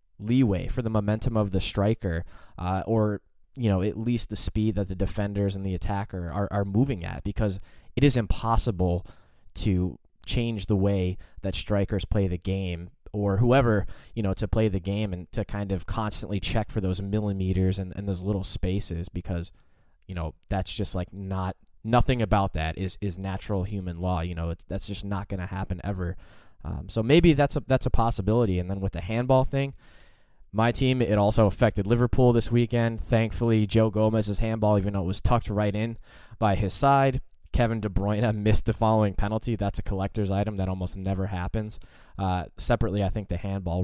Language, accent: English, American